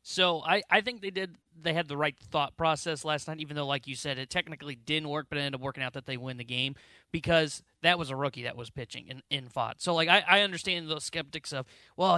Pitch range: 145-180 Hz